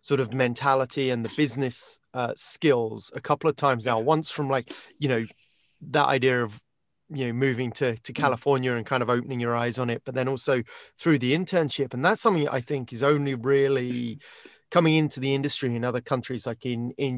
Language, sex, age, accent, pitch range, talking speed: English, male, 30-49, British, 120-145 Hz, 205 wpm